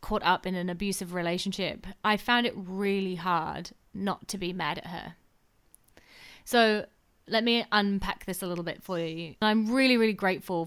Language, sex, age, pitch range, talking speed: English, female, 20-39, 175-205 Hz, 175 wpm